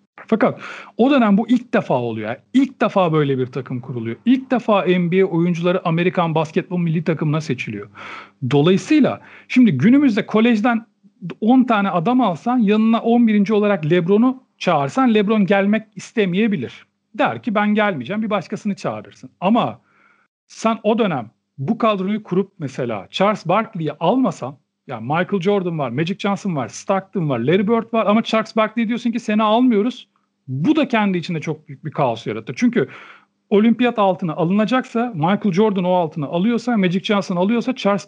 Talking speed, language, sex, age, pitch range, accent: 155 wpm, Turkish, male, 40-59, 155-220 Hz, native